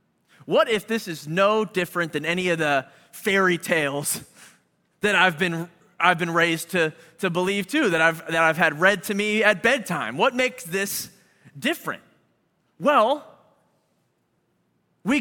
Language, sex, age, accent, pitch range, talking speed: English, male, 30-49, American, 180-245 Hz, 150 wpm